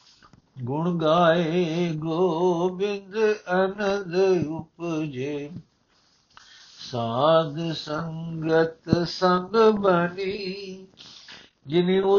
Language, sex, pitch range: Punjabi, male, 165-200 Hz